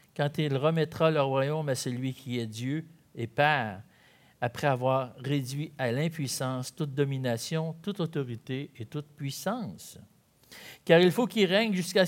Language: French